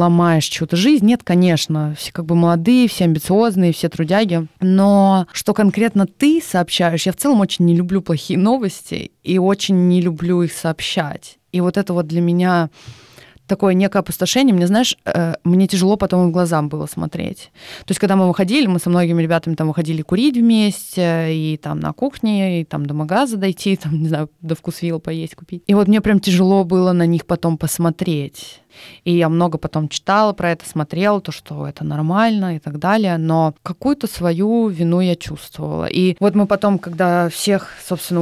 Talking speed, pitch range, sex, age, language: 185 wpm, 160-190 Hz, female, 20-39, Russian